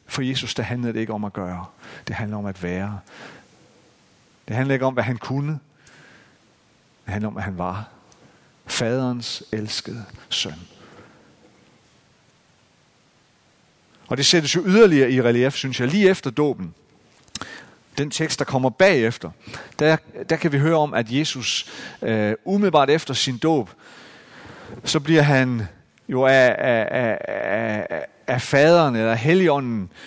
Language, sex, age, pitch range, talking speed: Danish, male, 40-59, 110-150 Hz, 135 wpm